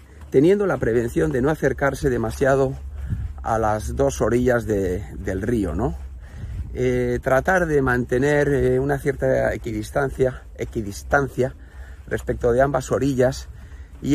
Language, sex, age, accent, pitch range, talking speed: Spanish, male, 50-69, Spanish, 105-140 Hz, 120 wpm